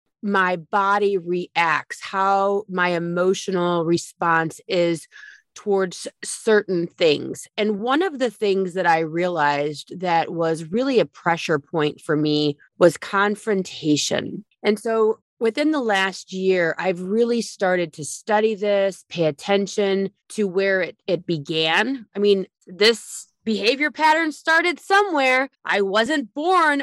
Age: 30-49